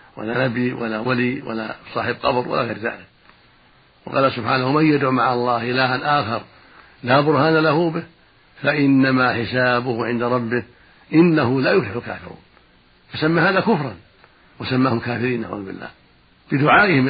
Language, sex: Arabic, male